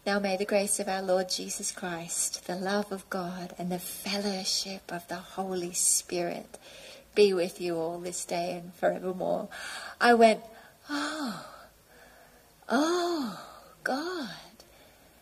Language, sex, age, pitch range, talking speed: English, female, 30-49, 205-280 Hz, 130 wpm